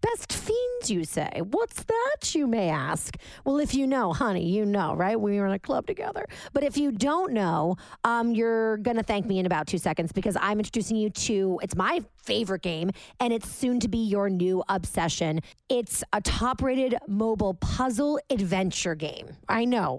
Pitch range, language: 195-265 Hz, English